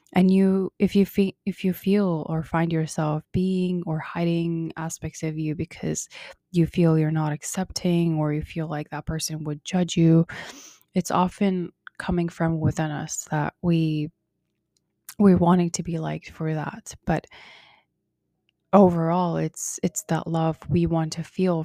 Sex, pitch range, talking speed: female, 155-175 Hz, 160 wpm